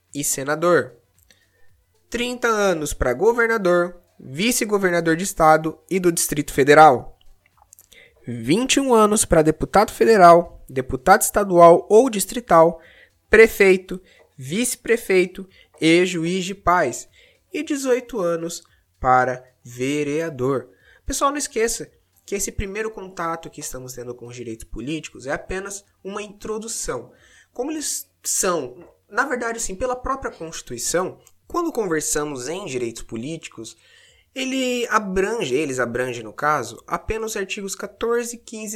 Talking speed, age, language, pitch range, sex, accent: 120 wpm, 20-39, Portuguese, 150-225 Hz, male, Brazilian